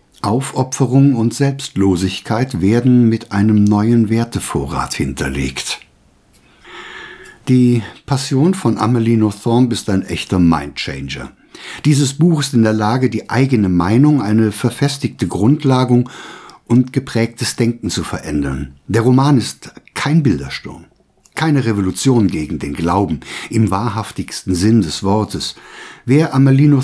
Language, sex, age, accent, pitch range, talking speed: German, male, 60-79, German, 100-135 Hz, 115 wpm